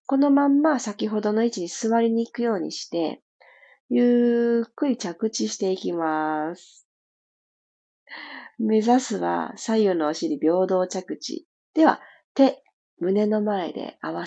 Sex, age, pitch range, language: female, 40-59, 180-255 Hz, Japanese